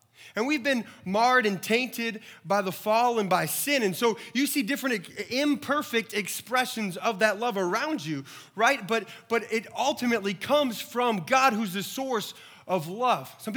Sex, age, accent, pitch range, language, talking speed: male, 30-49, American, 170-230 Hz, English, 170 wpm